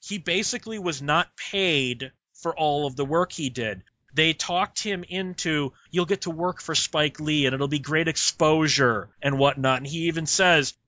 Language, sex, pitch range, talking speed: English, male, 140-175 Hz, 190 wpm